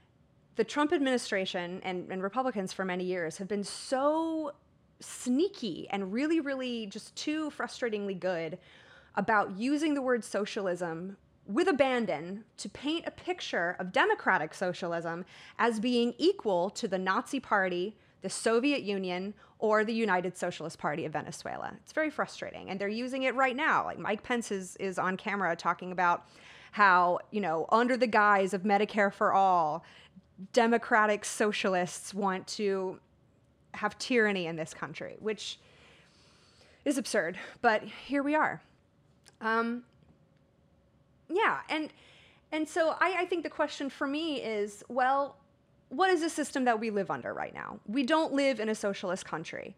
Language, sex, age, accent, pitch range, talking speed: English, female, 30-49, American, 190-265 Hz, 150 wpm